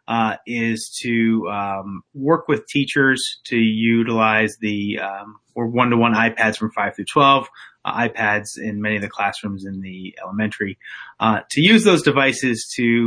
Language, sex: English, male